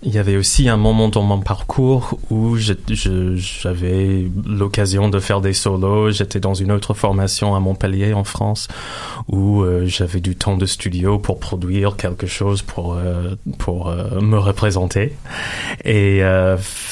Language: French